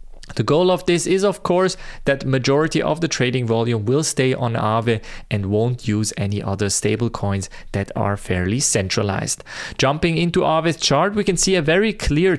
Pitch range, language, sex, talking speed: 115-160 Hz, English, male, 185 wpm